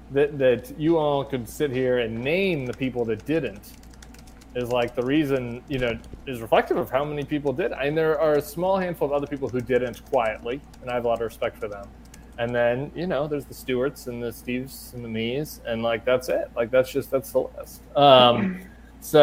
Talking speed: 225 wpm